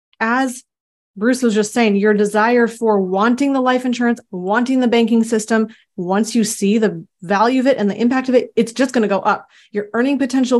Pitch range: 200-235 Hz